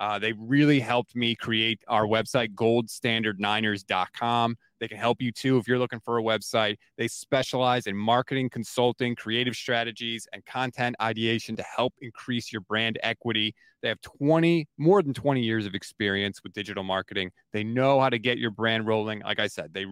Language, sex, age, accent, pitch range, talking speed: English, male, 30-49, American, 110-160 Hz, 180 wpm